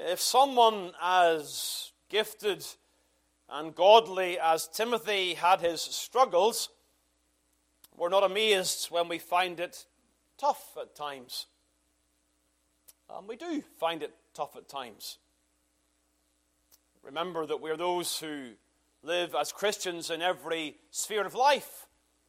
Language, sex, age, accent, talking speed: English, male, 30-49, British, 115 wpm